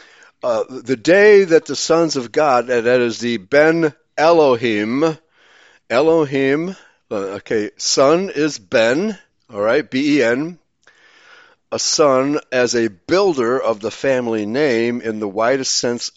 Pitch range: 115-150 Hz